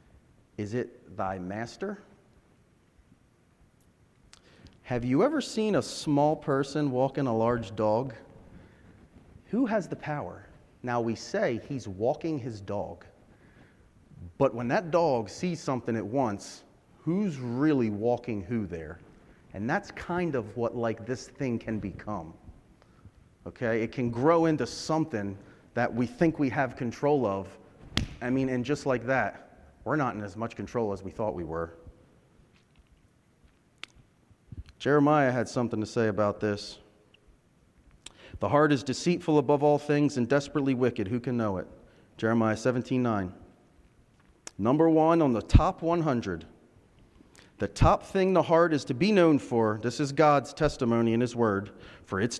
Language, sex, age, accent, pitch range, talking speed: English, male, 30-49, American, 105-150 Hz, 145 wpm